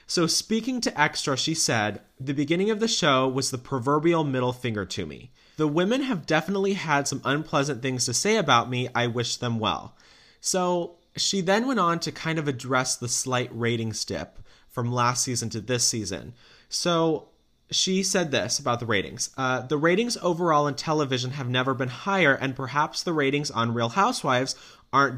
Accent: American